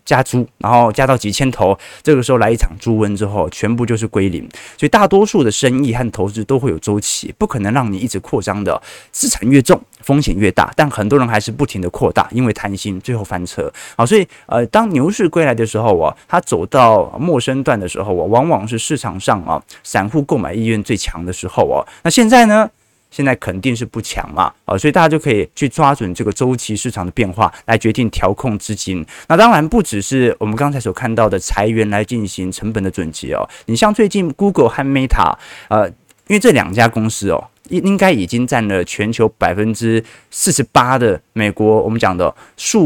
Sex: male